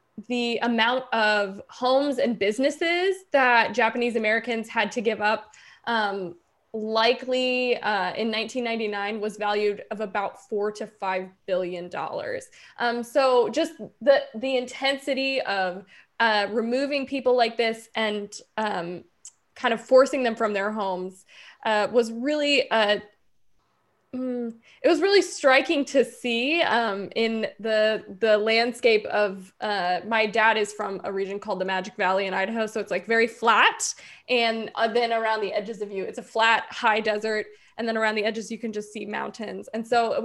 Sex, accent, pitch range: female, American, 205-245 Hz